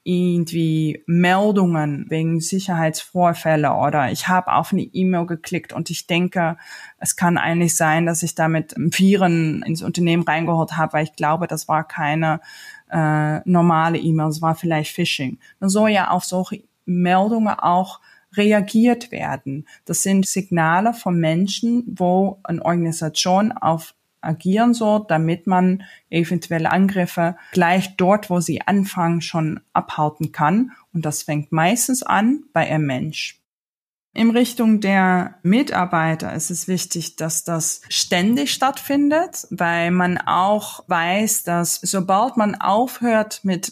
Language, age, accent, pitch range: German, 20-39, German, 160-205 Hz